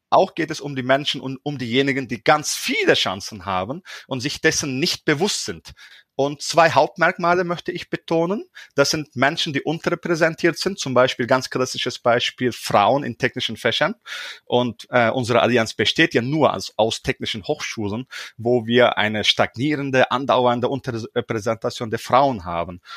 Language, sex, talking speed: German, male, 160 wpm